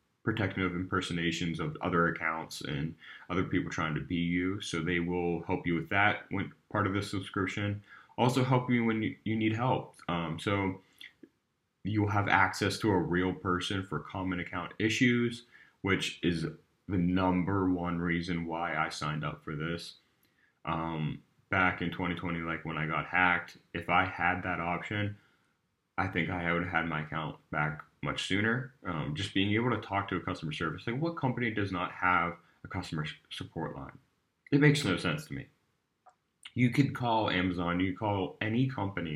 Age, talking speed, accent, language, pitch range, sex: 30-49, 180 wpm, American, English, 85-105 Hz, male